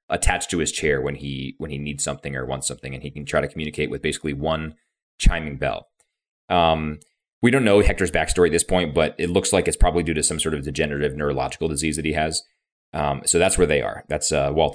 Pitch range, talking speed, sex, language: 70-85 Hz, 240 wpm, male, English